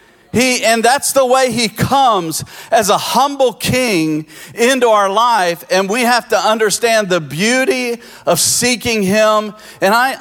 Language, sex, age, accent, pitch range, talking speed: English, male, 50-69, American, 180-220 Hz, 145 wpm